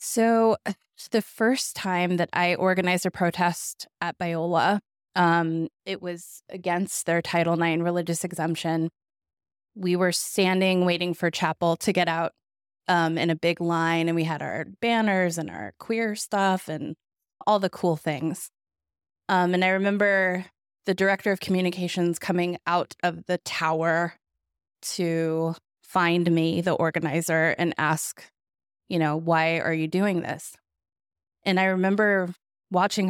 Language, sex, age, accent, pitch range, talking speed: English, female, 20-39, American, 160-185 Hz, 145 wpm